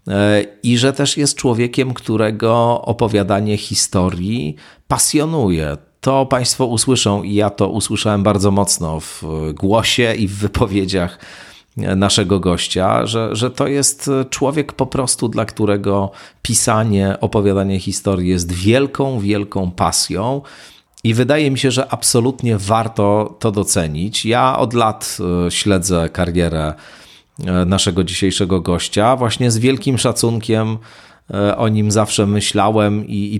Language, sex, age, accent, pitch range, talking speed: Polish, male, 40-59, native, 95-120 Hz, 120 wpm